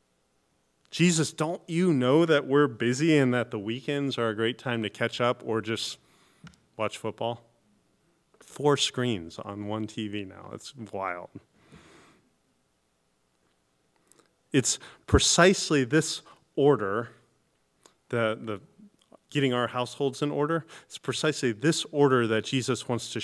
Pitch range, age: 105-135 Hz, 30-49